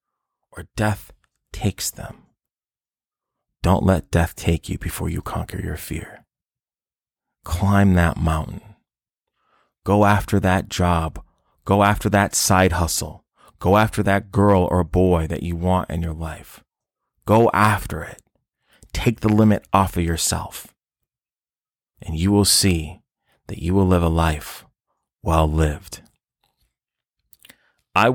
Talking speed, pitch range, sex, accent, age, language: 130 wpm, 85-105 Hz, male, American, 30-49, English